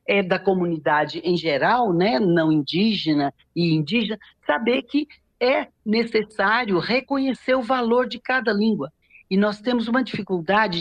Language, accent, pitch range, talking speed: Portuguese, Brazilian, 180-240 Hz, 140 wpm